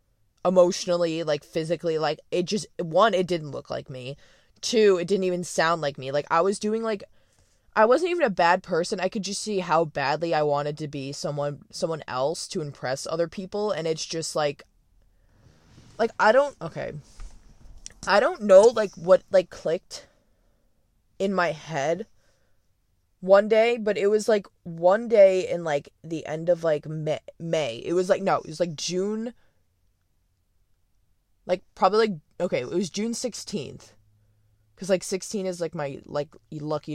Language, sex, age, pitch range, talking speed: English, female, 20-39, 140-195 Hz, 170 wpm